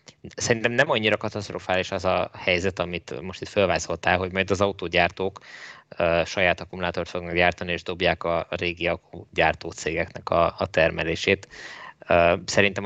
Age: 20-39